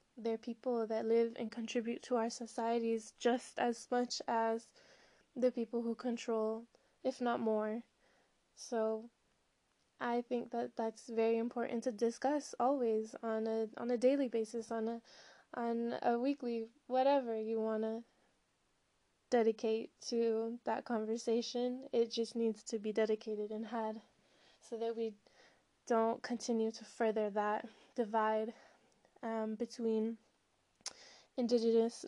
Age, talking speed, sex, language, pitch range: 10-29, 130 wpm, female, English, 220-240 Hz